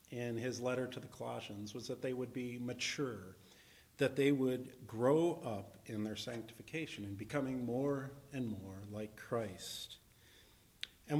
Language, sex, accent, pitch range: English, male, American, 105-135 Hz